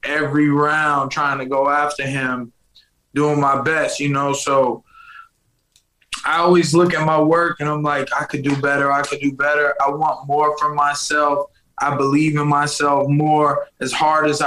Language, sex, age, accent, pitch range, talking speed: English, male, 20-39, American, 140-155 Hz, 180 wpm